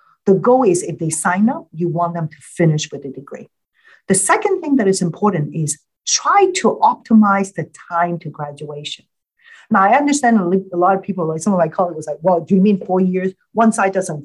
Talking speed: 220 wpm